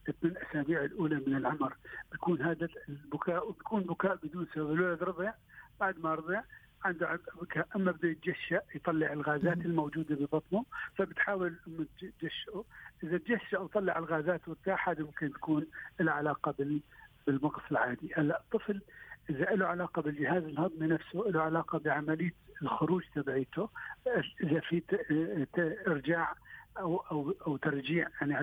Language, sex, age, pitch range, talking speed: Arabic, male, 60-79, 150-180 Hz, 130 wpm